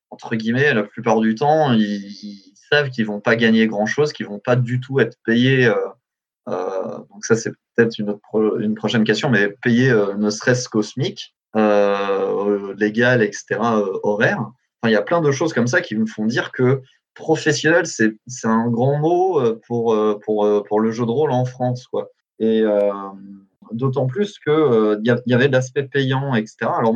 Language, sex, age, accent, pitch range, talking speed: French, male, 20-39, French, 110-135 Hz, 200 wpm